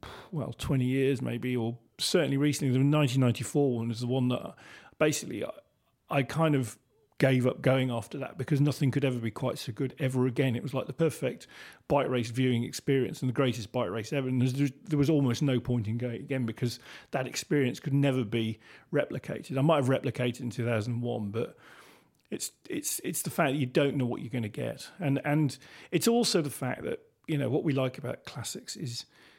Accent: British